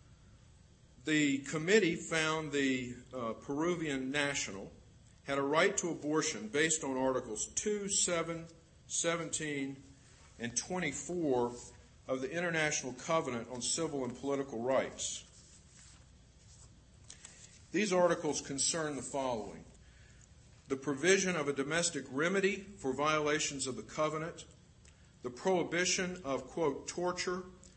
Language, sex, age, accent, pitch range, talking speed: English, male, 50-69, American, 125-160 Hz, 110 wpm